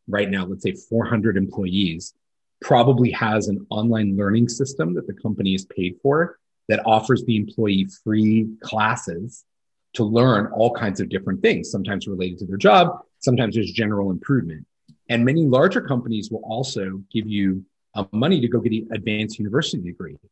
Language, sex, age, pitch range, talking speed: English, male, 30-49, 100-130 Hz, 170 wpm